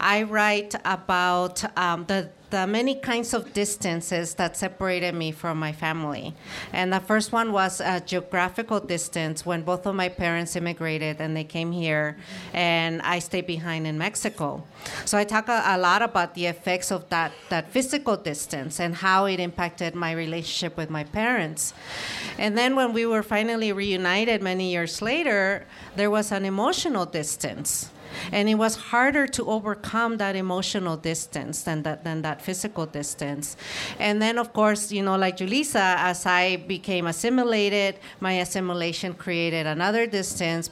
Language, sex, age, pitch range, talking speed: English, female, 40-59, 165-205 Hz, 160 wpm